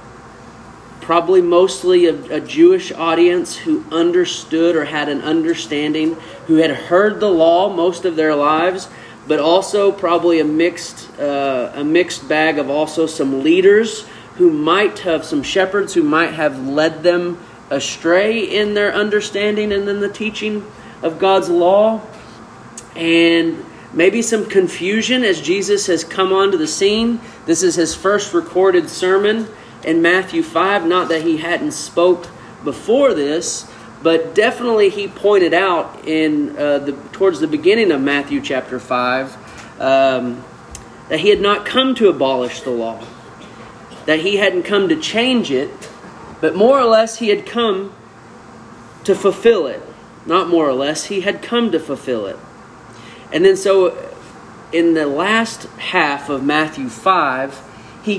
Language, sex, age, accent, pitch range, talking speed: English, male, 30-49, American, 150-205 Hz, 150 wpm